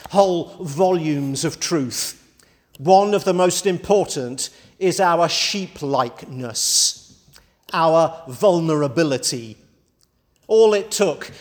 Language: English